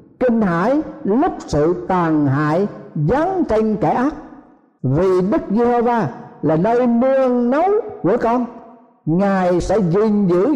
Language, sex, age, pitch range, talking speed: Vietnamese, male, 60-79, 195-275 Hz, 130 wpm